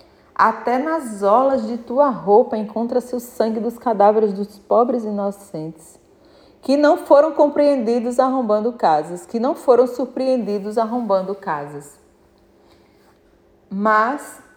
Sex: female